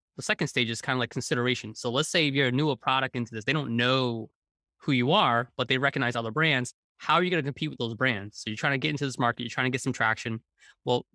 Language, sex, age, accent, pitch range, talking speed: English, male, 20-39, American, 115-145 Hz, 285 wpm